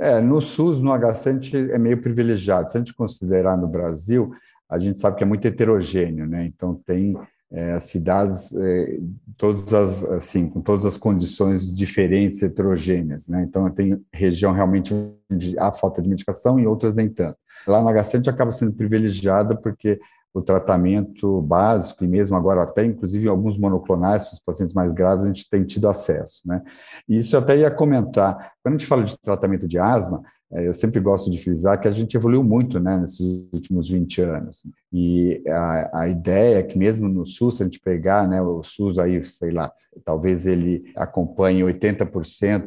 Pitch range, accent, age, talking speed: 90-110 Hz, Brazilian, 50-69, 180 wpm